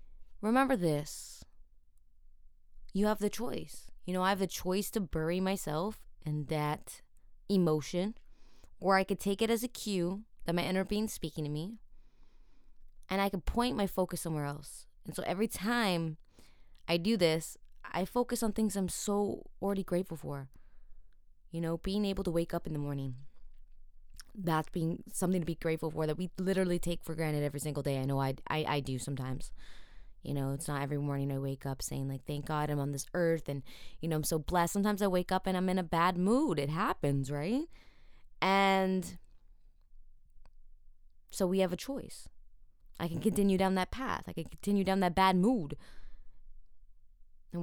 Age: 20-39